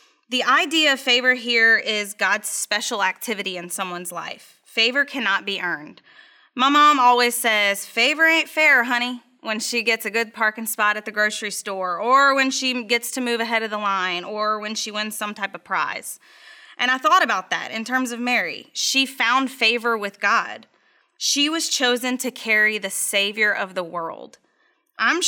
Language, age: English, 20-39